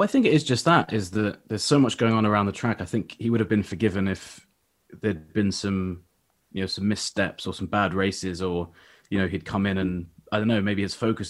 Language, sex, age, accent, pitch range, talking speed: English, male, 20-39, British, 90-110 Hz, 255 wpm